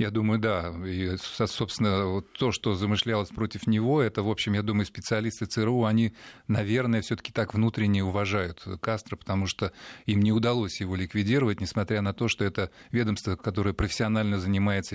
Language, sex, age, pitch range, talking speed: Russian, male, 30-49, 100-115 Hz, 175 wpm